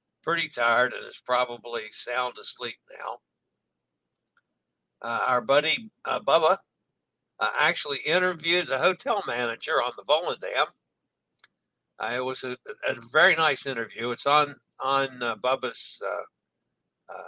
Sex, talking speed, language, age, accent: male, 120 wpm, English, 60-79, American